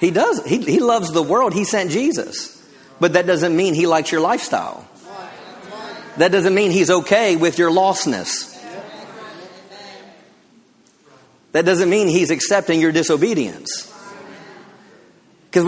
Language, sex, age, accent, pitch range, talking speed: English, male, 40-59, American, 150-200 Hz, 130 wpm